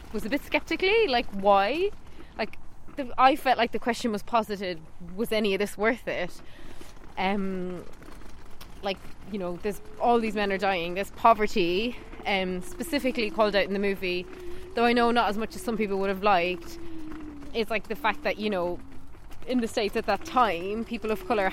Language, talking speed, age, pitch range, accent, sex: English, 185 wpm, 20-39, 200-280 Hz, Irish, female